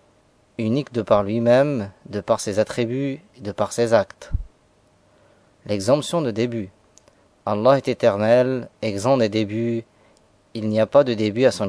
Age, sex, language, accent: 30-49, male, French, French